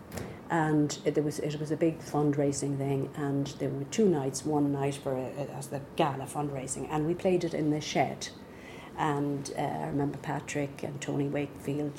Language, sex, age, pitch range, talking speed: English, female, 50-69, 145-175 Hz, 190 wpm